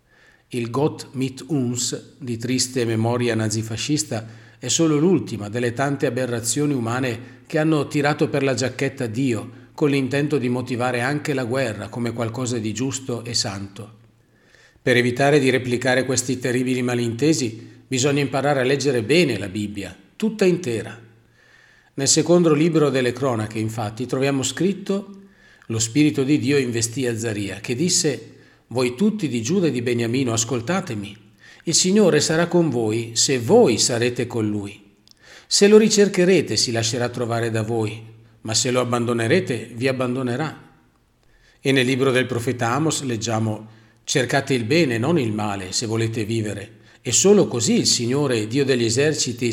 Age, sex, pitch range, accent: 40-59, male, 115-140 Hz, native